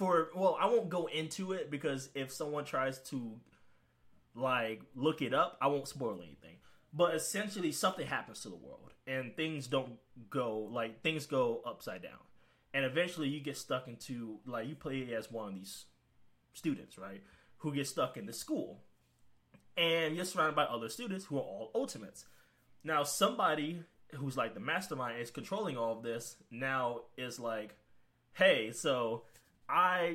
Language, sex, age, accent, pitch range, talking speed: English, male, 20-39, American, 125-175 Hz, 165 wpm